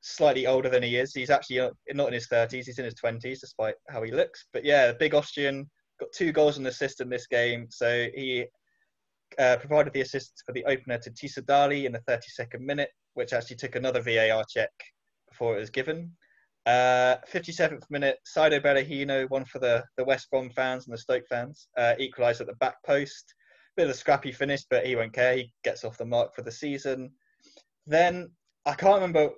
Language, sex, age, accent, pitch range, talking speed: English, male, 20-39, British, 120-145 Hz, 205 wpm